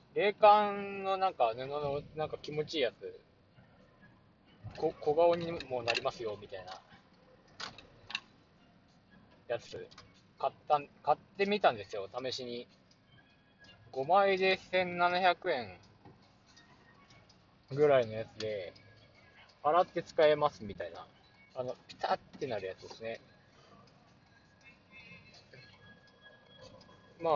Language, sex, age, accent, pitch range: Japanese, male, 20-39, native, 120-175 Hz